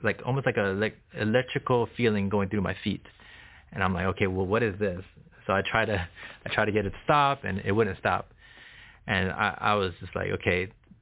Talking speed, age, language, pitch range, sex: 225 wpm, 30-49, English, 100-115 Hz, male